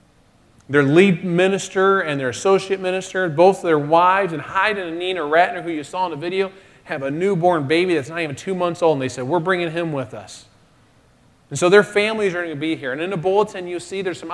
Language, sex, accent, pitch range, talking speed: English, male, American, 150-190 Hz, 235 wpm